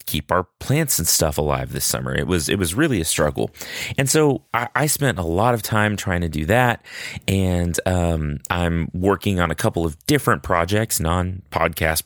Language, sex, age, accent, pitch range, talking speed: English, male, 30-49, American, 85-115 Hz, 195 wpm